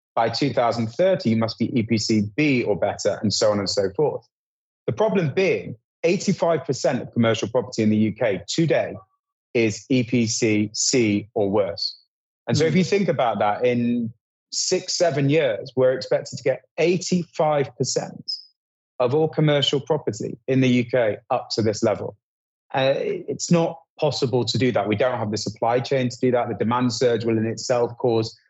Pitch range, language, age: 115-160 Hz, English, 30-49